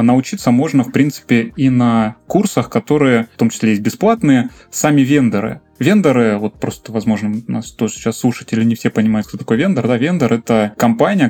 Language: Russian